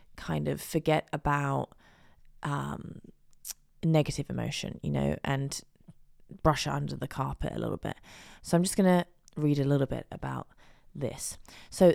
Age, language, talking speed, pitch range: 20-39, English, 145 wpm, 140-165 Hz